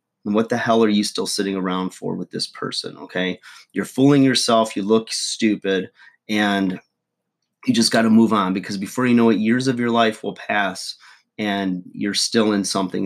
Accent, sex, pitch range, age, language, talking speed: American, male, 95-105 Hz, 30-49, English, 200 wpm